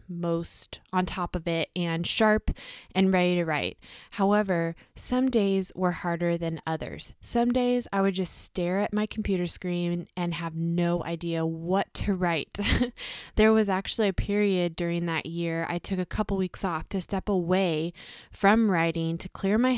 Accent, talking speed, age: American, 175 wpm, 20-39